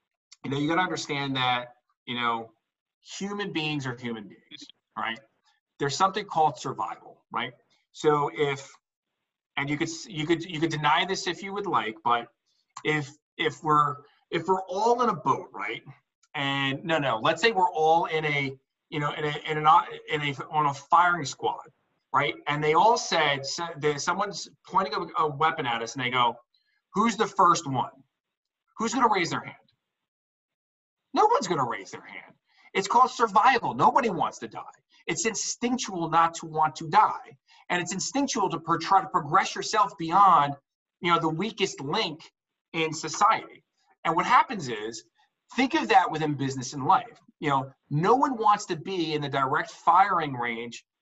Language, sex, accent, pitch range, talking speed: English, male, American, 140-195 Hz, 180 wpm